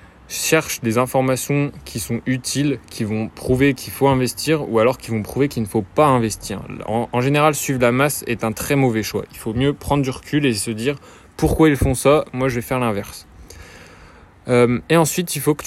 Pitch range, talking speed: 110-140 Hz, 215 wpm